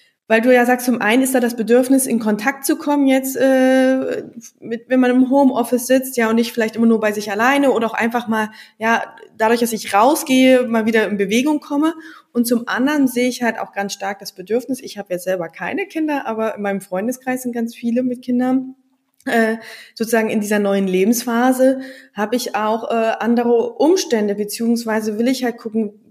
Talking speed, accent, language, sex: 200 wpm, German, German, female